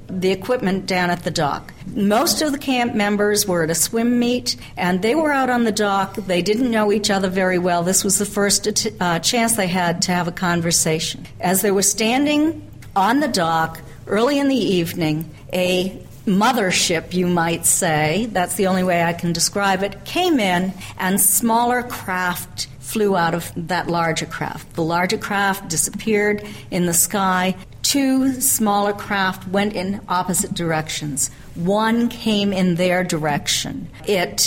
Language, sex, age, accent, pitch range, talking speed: English, female, 50-69, American, 175-220 Hz, 170 wpm